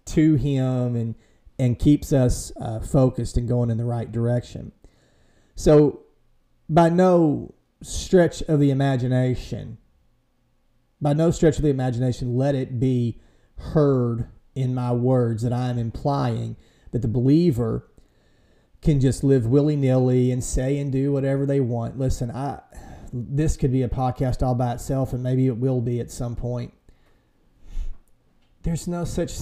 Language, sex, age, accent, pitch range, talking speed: English, male, 40-59, American, 125-160 Hz, 150 wpm